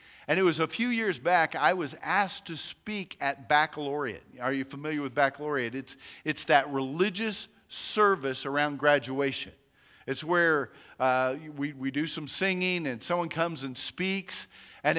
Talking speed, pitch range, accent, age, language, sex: 160 wpm, 140-195 Hz, American, 50-69, English, male